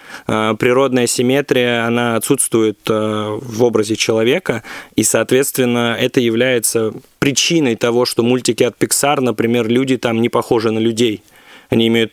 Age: 20-39